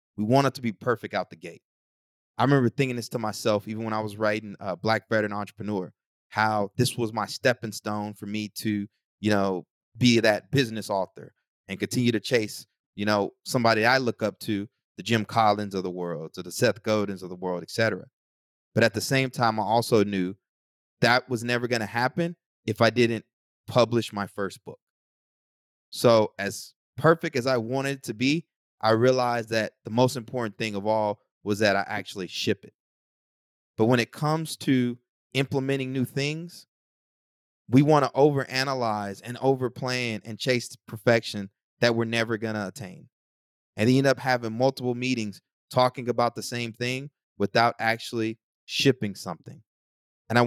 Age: 30-49